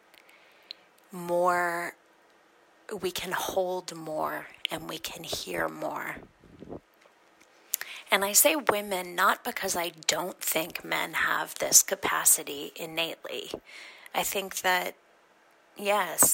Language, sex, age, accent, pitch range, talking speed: English, female, 30-49, American, 165-195 Hz, 105 wpm